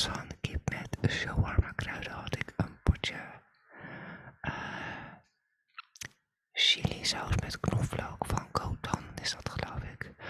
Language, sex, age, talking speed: Dutch, male, 20-39, 115 wpm